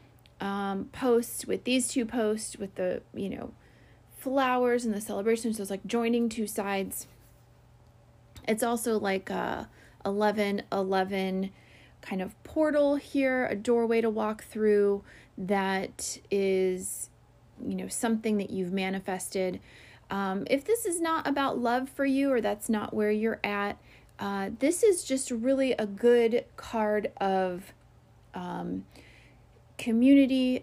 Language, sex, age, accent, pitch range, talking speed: English, female, 30-49, American, 190-240 Hz, 135 wpm